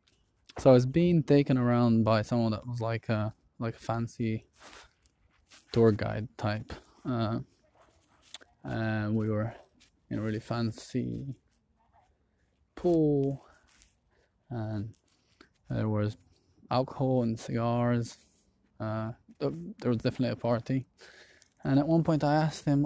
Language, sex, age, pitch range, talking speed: English, male, 20-39, 115-130 Hz, 120 wpm